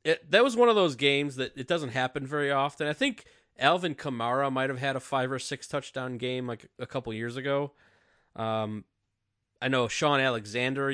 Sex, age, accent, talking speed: male, 20-39, American, 195 wpm